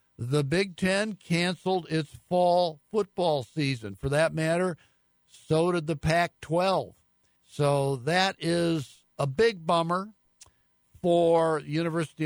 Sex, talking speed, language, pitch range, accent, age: male, 115 wpm, English, 140-170 Hz, American, 60-79